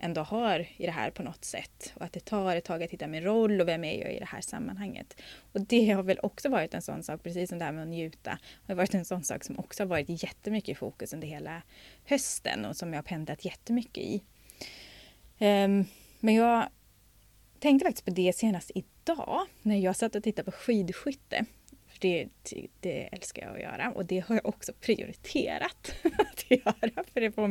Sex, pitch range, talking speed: female, 180-230 Hz, 210 wpm